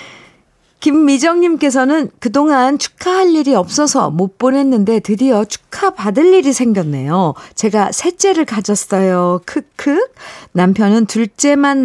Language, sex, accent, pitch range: Korean, female, native, 180-255 Hz